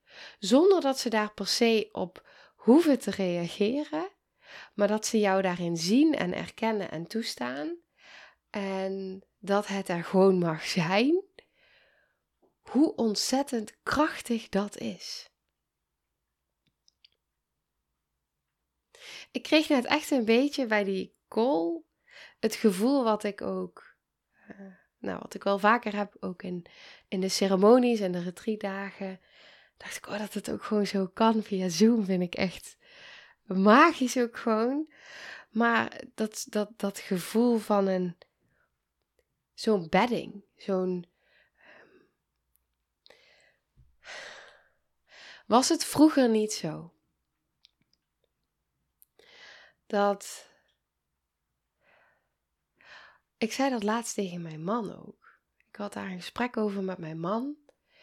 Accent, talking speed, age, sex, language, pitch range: Dutch, 115 wpm, 10-29, female, Dutch, 185-235 Hz